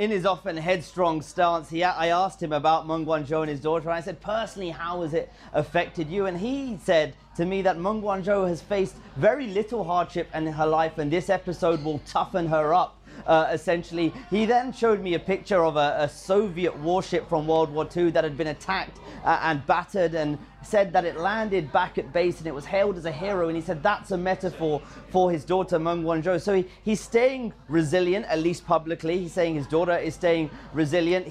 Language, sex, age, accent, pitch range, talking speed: English, male, 30-49, British, 155-185 Hz, 210 wpm